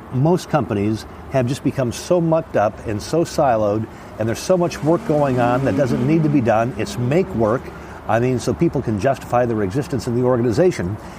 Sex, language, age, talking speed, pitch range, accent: male, English, 50-69, 205 wpm, 105-145 Hz, American